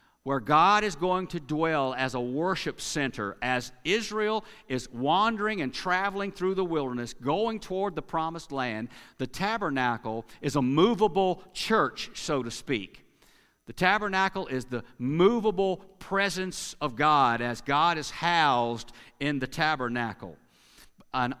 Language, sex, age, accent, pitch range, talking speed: English, male, 50-69, American, 125-170 Hz, 135 wpm